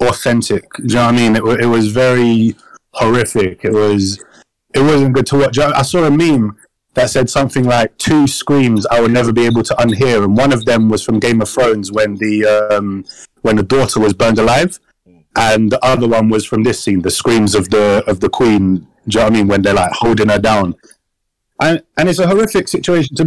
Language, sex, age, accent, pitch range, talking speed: English, male, 30-49, British, 115-145 Hz, 235 wpm